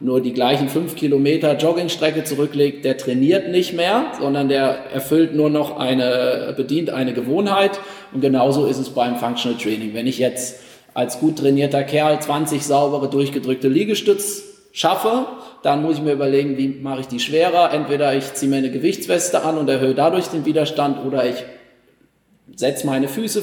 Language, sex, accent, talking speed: German, male, German, 165 wpm